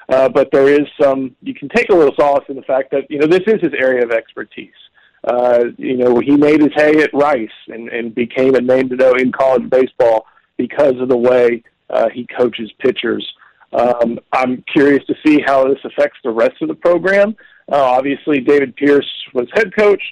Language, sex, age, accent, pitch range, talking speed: English, male, 40-59, American, 120-145 Hz, 210 wpm